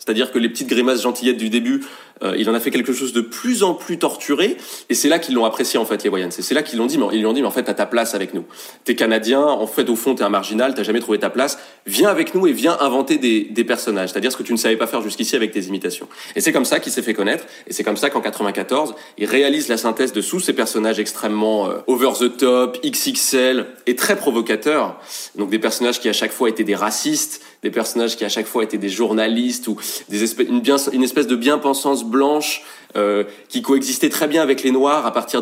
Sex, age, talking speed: male, 20-39, 260 wpm